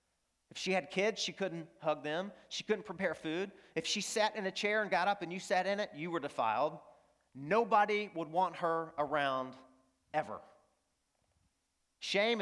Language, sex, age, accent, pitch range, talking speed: English, male, 40-59, American, 145-205 Hz, 175 wpm